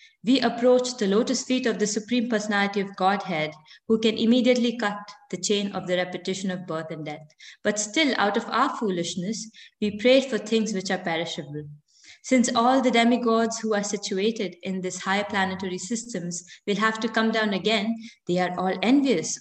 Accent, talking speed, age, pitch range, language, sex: Indian, 180 wpm, 20-39, 175-225 Hz, English, female